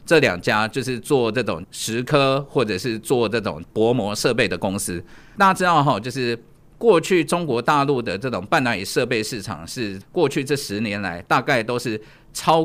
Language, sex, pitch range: Chinese, male, 115-160 Hz